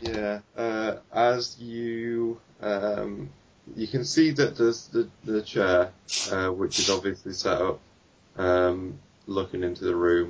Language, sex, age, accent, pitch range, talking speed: English, male, 20-39, British, 90-105 Hz, 140 wpm